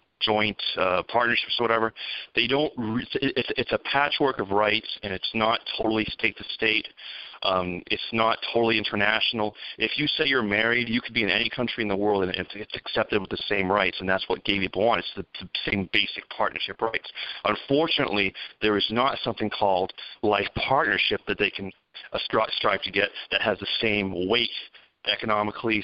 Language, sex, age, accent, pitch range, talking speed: English, male, 40-59, American, 100-115 Hz, 190 wpm